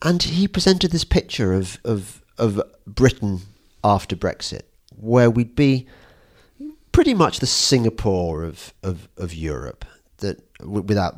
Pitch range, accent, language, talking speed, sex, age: 90-145 Hz, British, English, 130 wpm, male, 40-59